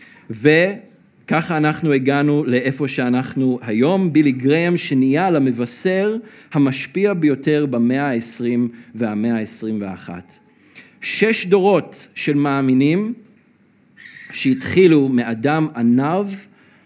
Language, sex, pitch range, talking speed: Hebrew, male, 130-180 Hz, 80 wpm